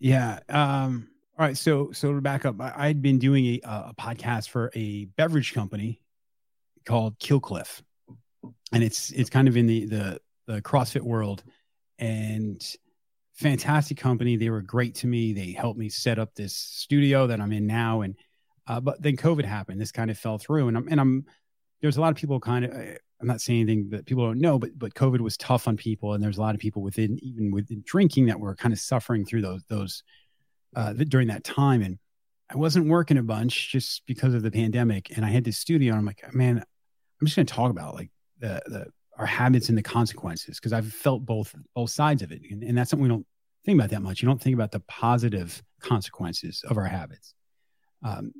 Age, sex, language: 30-49, male, English